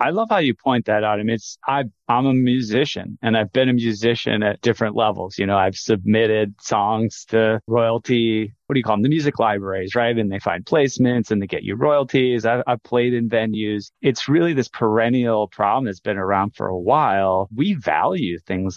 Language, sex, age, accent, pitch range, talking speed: English, male, 30-49, American, 105-125 Hz, 205 wpm